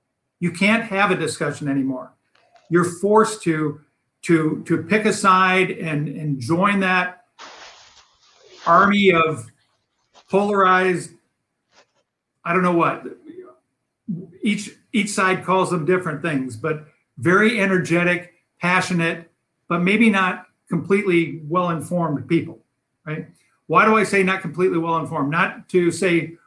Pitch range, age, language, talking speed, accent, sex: 150-190 Hz, 50-69, English, 120 wpm, American, male